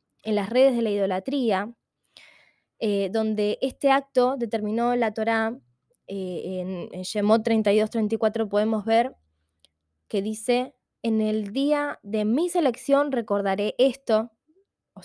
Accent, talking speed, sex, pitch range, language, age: Argentinian, 125 wpm, female, 210-255 Hz, Spanish, 20-39